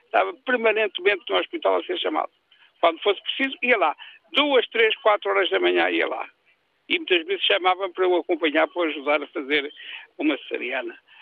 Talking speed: 180 wpm